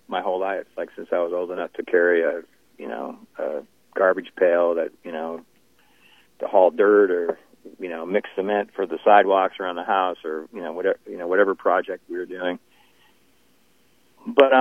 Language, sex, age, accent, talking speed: English, male, 40-59, American, 190 wpm